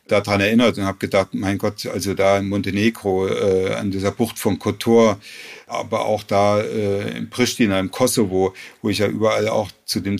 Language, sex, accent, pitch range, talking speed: German, male, German, 105-135 Hz, 190 wpm